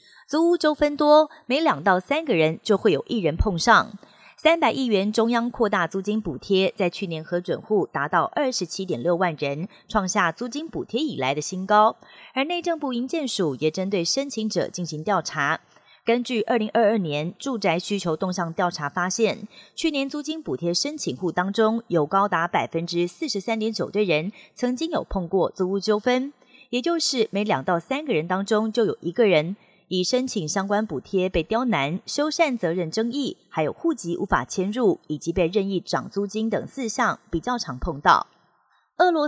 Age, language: 30-49, Chinese